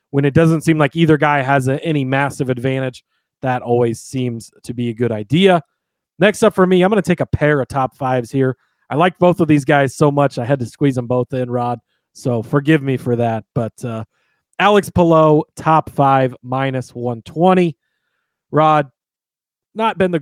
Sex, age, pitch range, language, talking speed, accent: male, 30-49, 125-155 Hz, English, 195 wpm, American